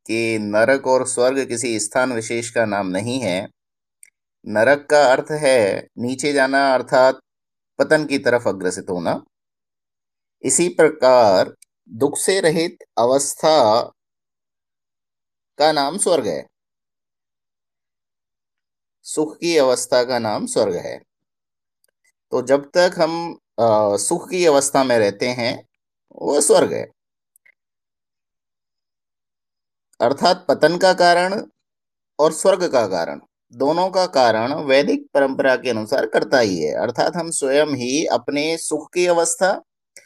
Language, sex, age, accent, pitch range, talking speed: Hindi, male, 50-69, native, 130-170 Hz, 120 wpm